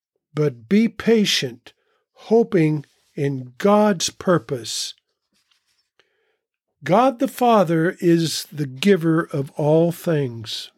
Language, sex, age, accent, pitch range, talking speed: English, male, 50-69, American, 145-220 Hz, 90 wpm